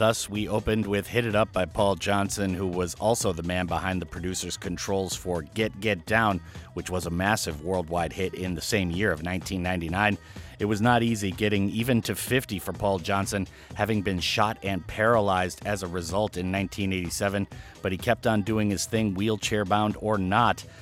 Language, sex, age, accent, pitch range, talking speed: English, male, 30-49, American, 95-110 Hz, 190 wpm